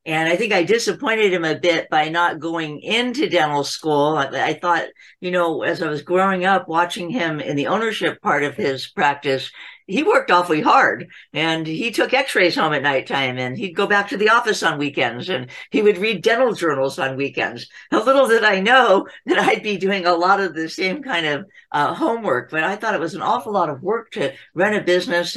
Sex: female